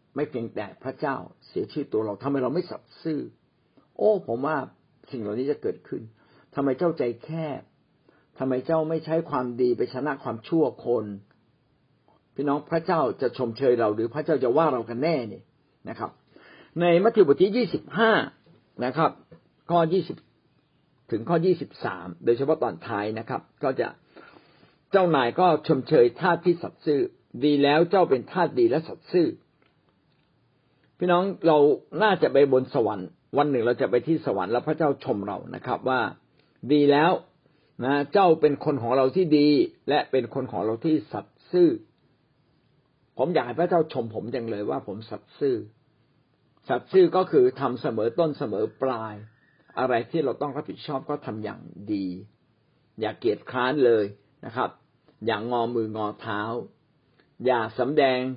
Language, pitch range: Thai, 120-165 Hz